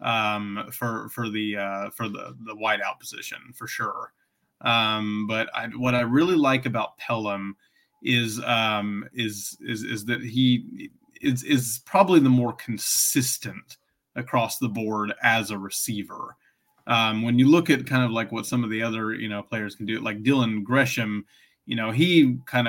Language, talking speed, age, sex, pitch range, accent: English, 175 wpm, 30-49, male, 105-130 Hz, American